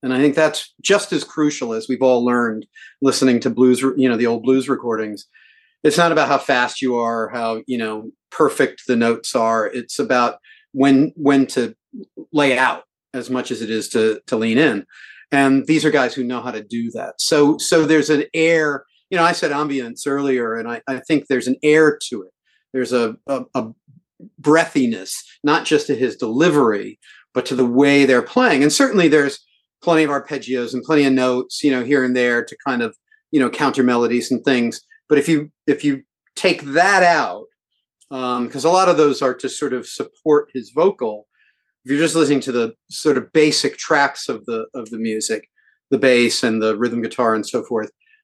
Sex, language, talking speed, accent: male, English, 205 wpm, American